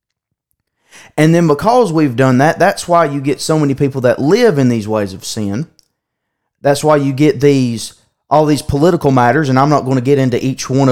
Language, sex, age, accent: English, male, 30-49, American